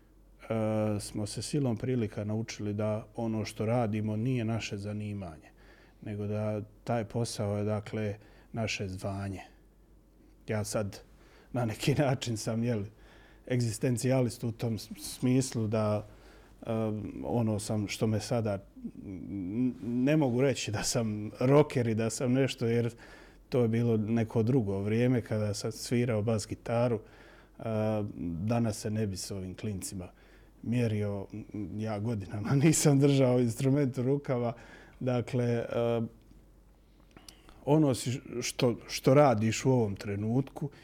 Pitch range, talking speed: 105-120 Hz, 120 wpm